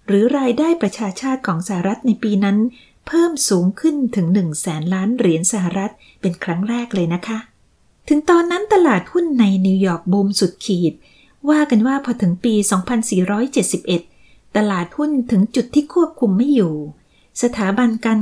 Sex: female